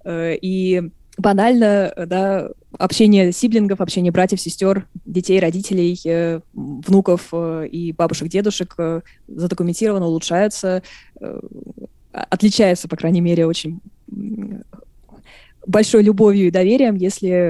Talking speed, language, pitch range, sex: 90 wpm, Russian, 165-195 Hz, female